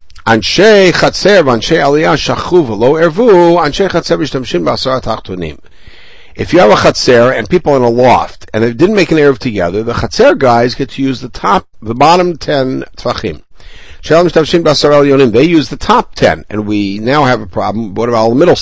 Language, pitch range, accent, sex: English, 105-140 Hz, American, male